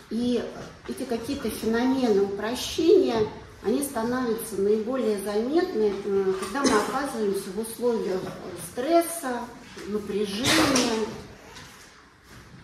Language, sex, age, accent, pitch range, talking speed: Russian, female, 40-59, native, 210-270 Hz, 75 wpm